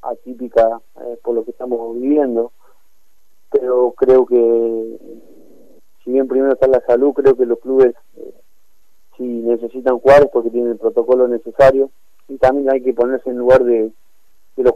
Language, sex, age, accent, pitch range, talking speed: Spanish, male, 30-49, Argentinian, 125-145 Hz, 165 wpm